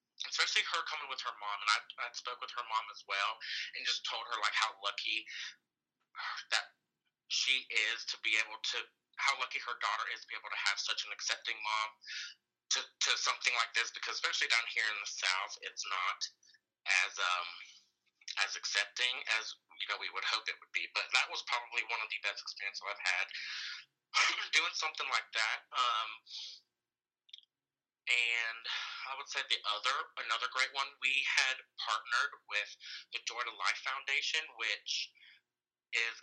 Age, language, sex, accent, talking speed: 30-49, English, male, American, 175 wpm